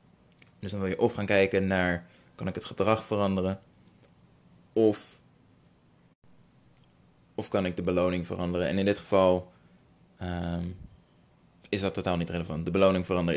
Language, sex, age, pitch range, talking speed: Dutch, male, 20-39, 90-110 Hz, 145 wpm